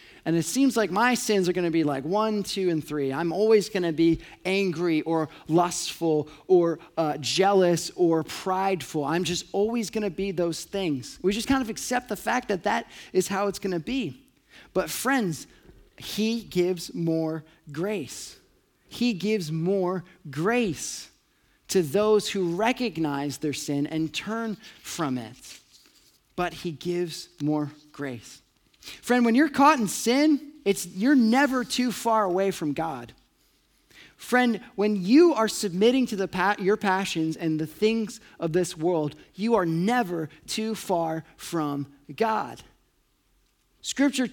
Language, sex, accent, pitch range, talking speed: English, male, American, 160-220 Hz, 155 wpm